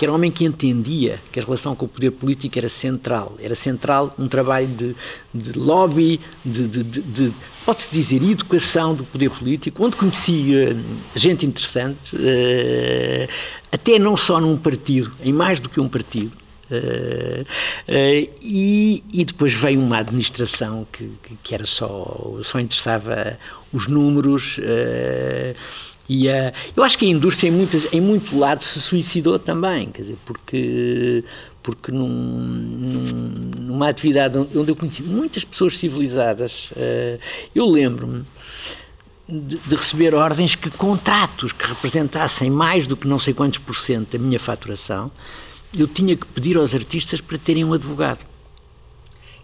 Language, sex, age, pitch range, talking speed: Portuguese, male, 50-69, 120-165 Hz, 140 wpm